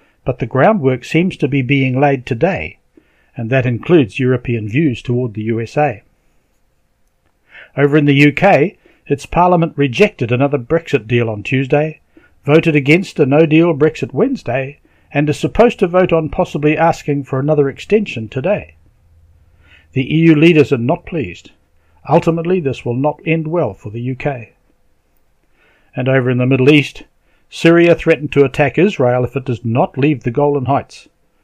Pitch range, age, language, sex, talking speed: 125-160 Hz, 60-79, English, male, 155 wpm